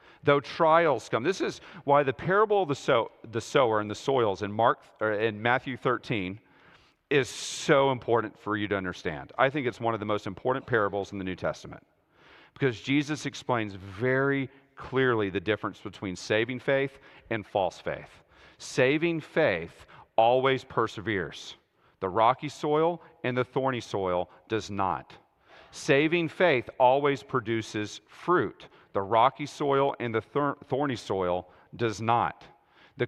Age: 40-59